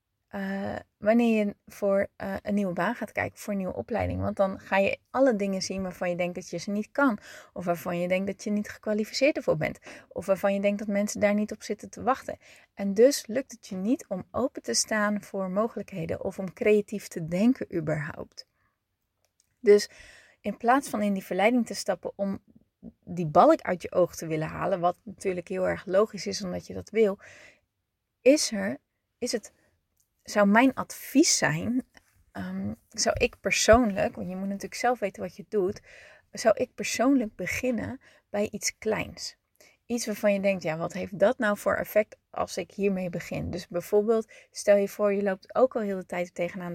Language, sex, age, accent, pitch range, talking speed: Dutch, female, 30-49, Dutch, 185-230 Hz, 195 wpm